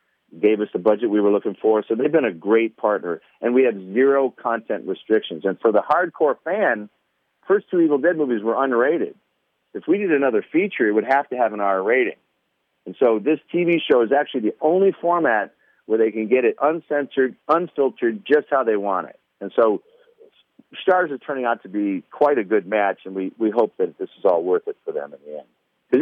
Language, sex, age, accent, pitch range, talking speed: English, male, 50-69, American, 110-175 Hz, 220 wpm